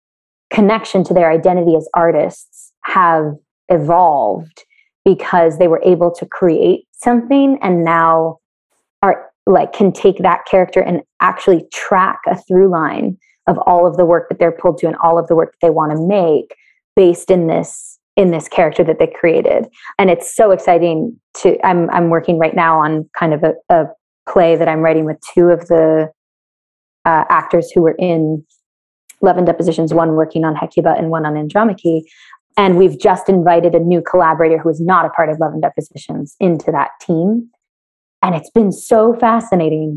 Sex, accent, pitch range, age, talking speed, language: female, American, 165-190 Hz, 20-39, 180 wpm, English